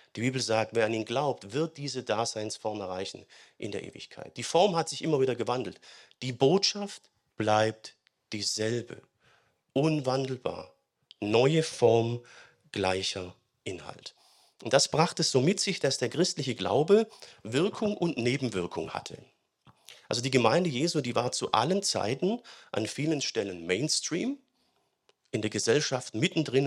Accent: German